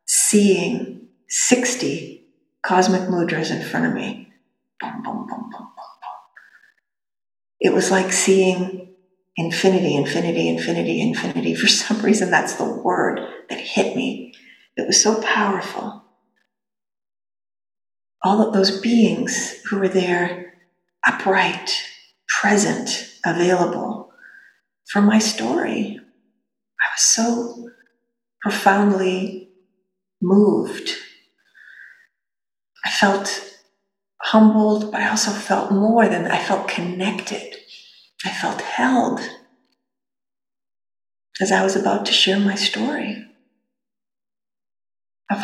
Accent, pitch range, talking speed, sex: American, 185-230 Hz, 95 wpm, female